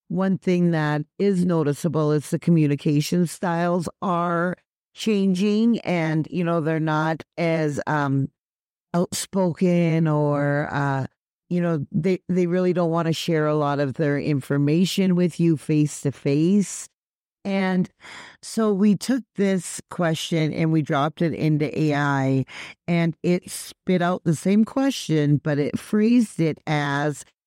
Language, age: English, 50-69